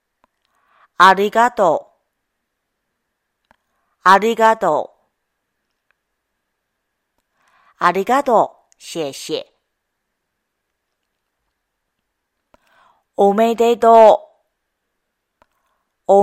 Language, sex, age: Japanese, female, 40-59